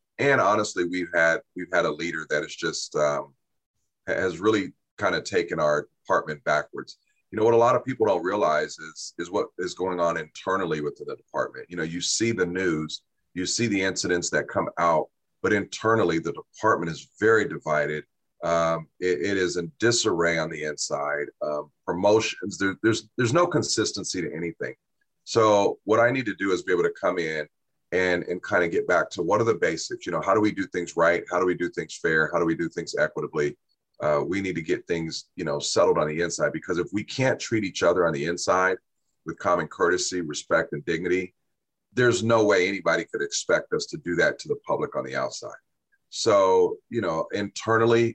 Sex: male